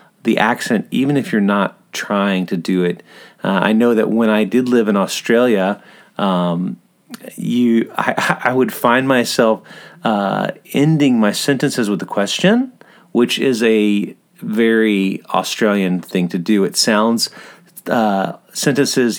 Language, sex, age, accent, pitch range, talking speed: English, male, 40-59, American, 100-140 Hz, 145 wpm